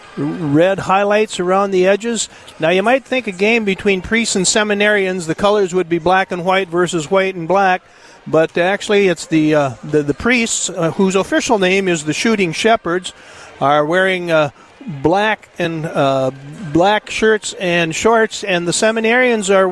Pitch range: 160-205 Hz